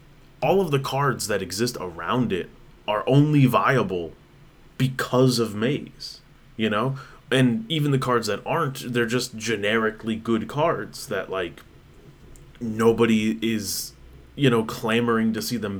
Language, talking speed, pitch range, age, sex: English, 140 wpm, 110-140 Hz, 30-49, male